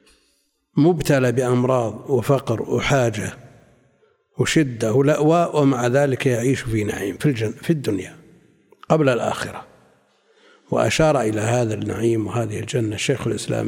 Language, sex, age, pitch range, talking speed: Arabic, male, 60-79, 125-155 Hz, 110 wpm